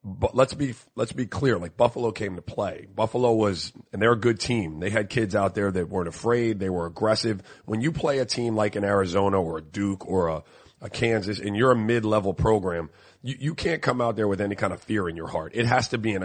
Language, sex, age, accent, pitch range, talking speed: English, male, 30-49, American, 100-120 Hz, 250 wpm